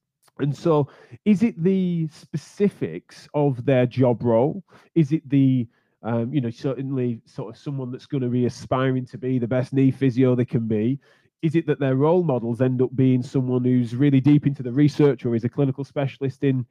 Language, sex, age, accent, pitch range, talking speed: English, male, 20-39, British, 125-155 Hz, 200 wpm